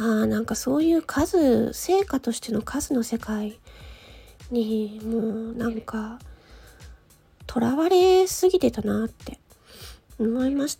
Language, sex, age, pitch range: Japanese, female, 40-59, 225-330 Hz